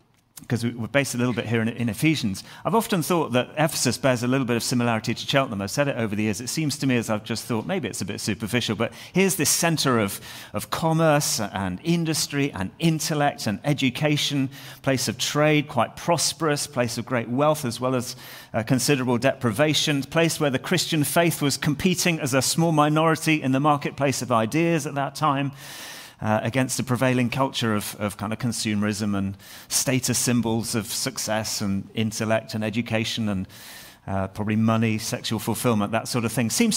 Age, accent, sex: 40-59, British, male